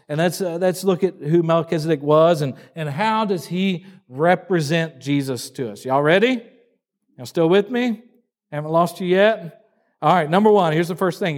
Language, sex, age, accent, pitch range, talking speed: English, male, 50-69, American, 150-200 Hz, 190 wpm